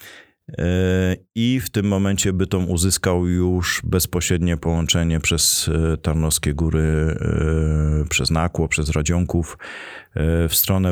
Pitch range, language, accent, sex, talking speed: 85-100 Hz, Polish, native, male, 100 wpm